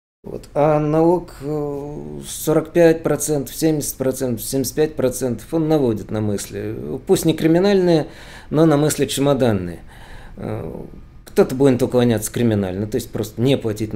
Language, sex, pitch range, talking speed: Russian, male, 110-155 Hz, 110 wpm